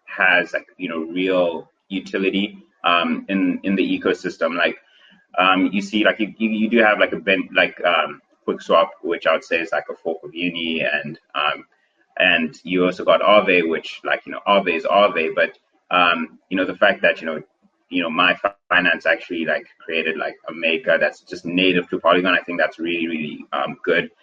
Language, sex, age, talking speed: English, male, 30-49, 200 wpm